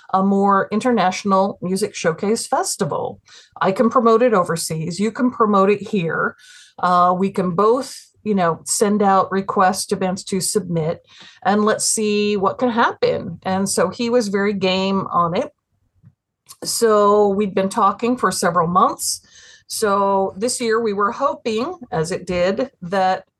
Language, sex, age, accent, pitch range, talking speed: English, female, 50-69, American, 180-225 Hz, 150 wpm